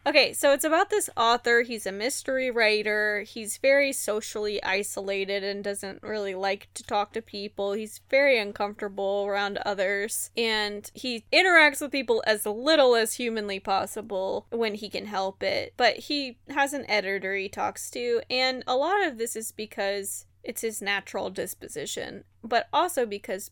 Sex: female